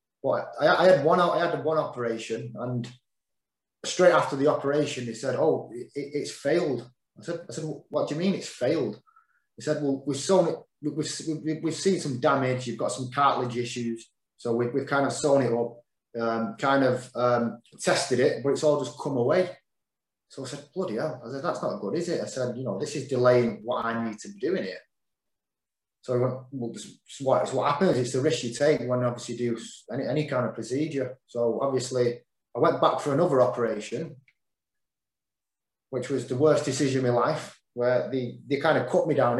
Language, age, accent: English, 20-39, British